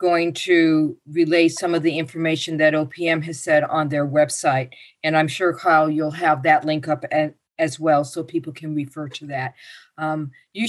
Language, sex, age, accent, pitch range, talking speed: English, female, 50-69, American, 155-175 Hz, 190 wpm